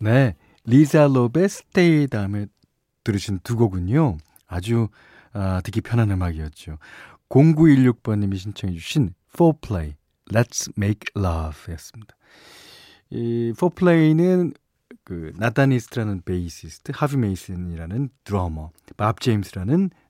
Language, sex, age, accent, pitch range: Korean, male, 40-59, native, 90-145 Hz